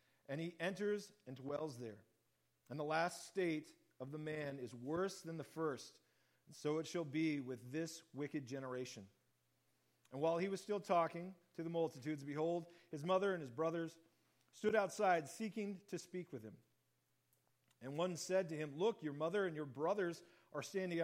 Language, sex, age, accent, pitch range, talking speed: English, male, 40-59, American, 140-185 Hz, 175 wpm